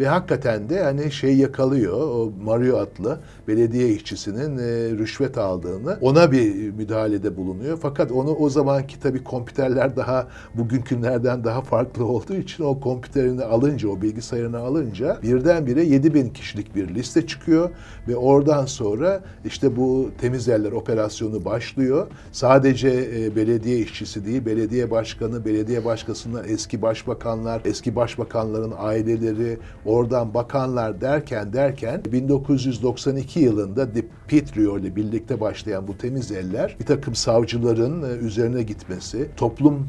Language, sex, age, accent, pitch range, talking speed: Turkish, male, 60-79, native, 115-135 Hz, 125 wpm